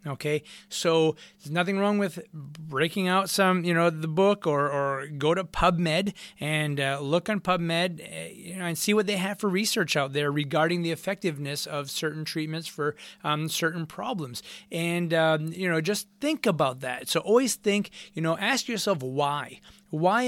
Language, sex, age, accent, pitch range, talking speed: English, male, 30-49, American, 150-190 Hz, 180 wpm